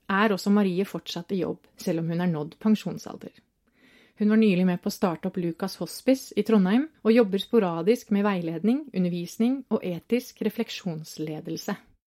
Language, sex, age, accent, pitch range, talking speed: English, female, 30-49, Swedish, 185-230 Hz, 165 wpm